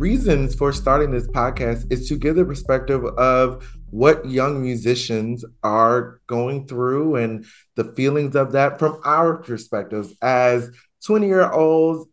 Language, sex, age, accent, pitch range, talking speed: English, male, 30-49, American, 120-155 Hz, 145 wpm